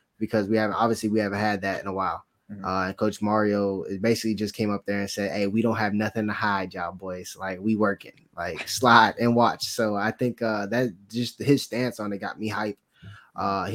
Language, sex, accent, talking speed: English, male, American, 225 wpm